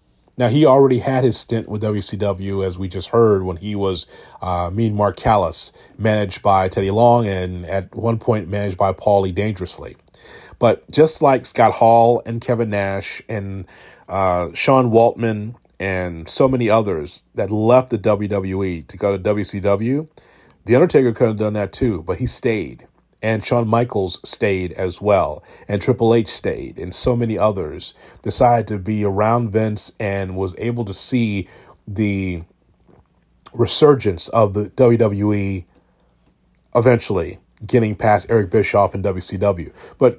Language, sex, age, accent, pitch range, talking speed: English, male, 30-49, American, 100-125 Hz, 150 wpm